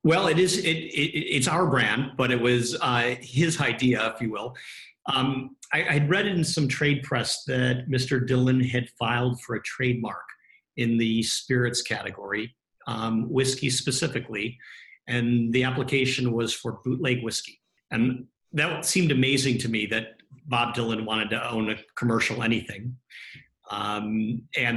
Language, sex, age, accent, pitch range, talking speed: English, male, 50-69, American, 115-140 Hz, 155 wpm